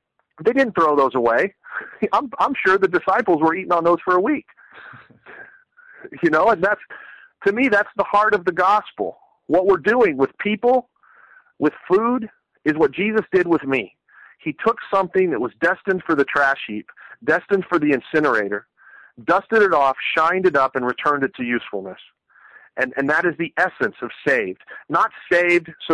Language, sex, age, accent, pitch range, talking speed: English, male, 40-59, American, 135-195 Hz, 180 wpm